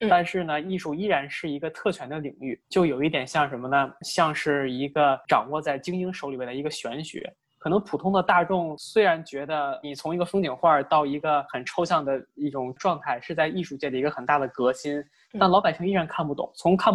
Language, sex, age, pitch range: Chinese, male, 20-39, 140-175 Hz